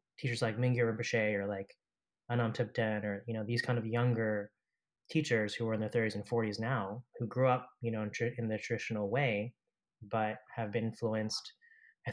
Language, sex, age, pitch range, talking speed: English, male, 20-39, 110-130 Hz, 200 wpm